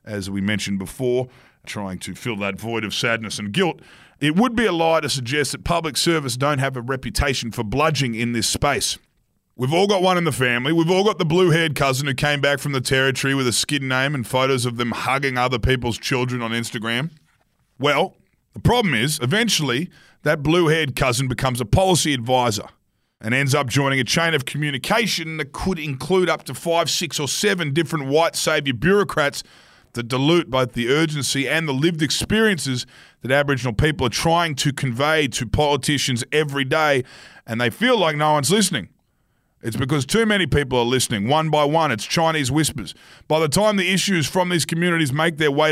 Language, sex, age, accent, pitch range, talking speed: English, male, 30-49, Australian, 125-160 Hz, 195 wpm